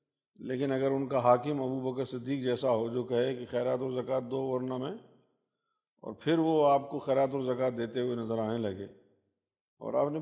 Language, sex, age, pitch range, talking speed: Urdu, male, 50-69, 120-160 Hz, 205 wpm